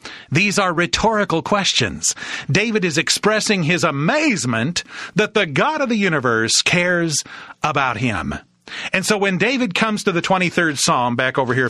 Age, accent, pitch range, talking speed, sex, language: 50-69, American, 135-190 Hz, 155 wpm, male, English